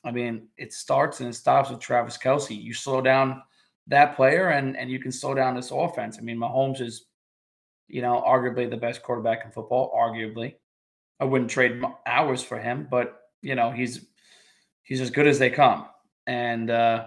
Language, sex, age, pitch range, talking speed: English, male, 20-39, 120-140 Hz, 185 wpm